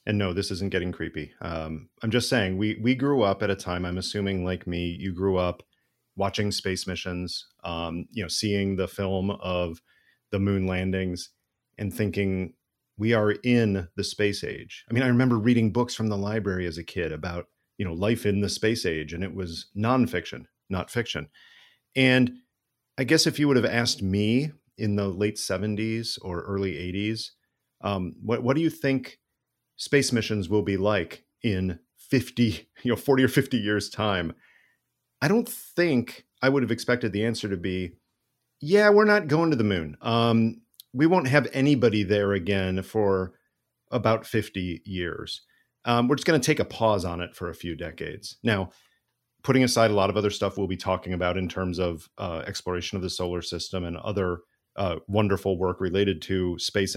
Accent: American